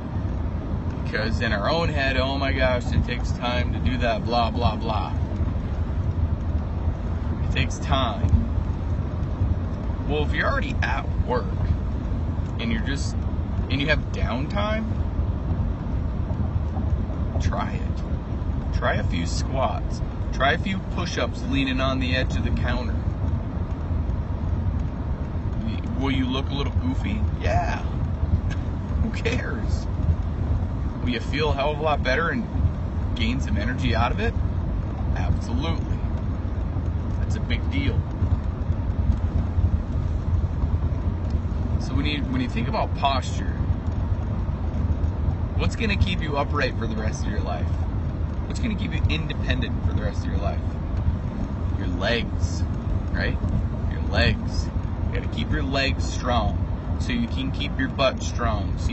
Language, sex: English, male